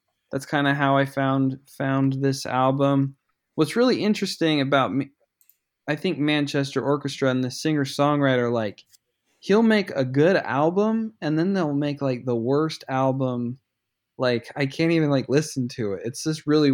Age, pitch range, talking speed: 20-39, 125-150 Hz, 165 wpm